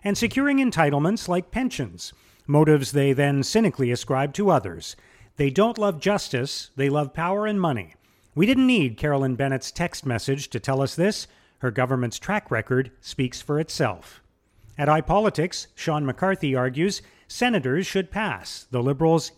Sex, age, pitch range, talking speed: male, 40-59, 130-190 Hz, 150 wpm